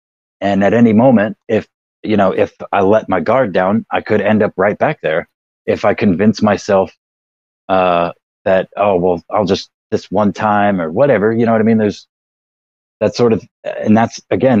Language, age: English, 30-49